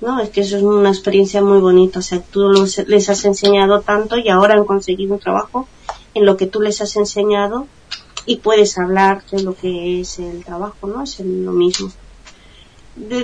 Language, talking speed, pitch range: Spanish, 200 wpm, 185-210 Hz